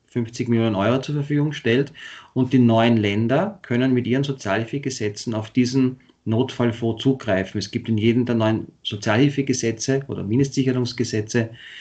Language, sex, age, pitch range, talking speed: German, male, 30-49, 110-125 Hz, 135 wpm